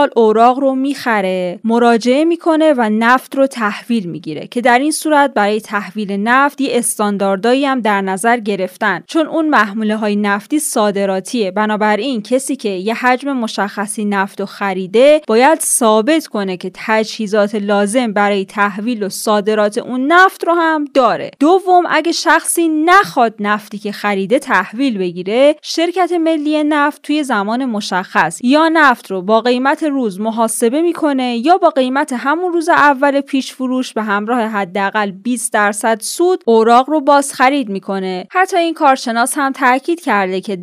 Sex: female